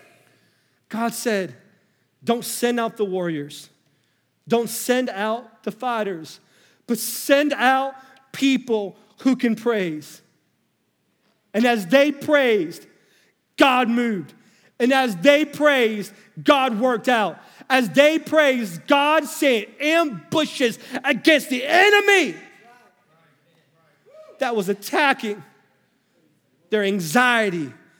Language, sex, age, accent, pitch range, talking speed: English, male, 40-59, American, 195-265 Hz, 100 wpm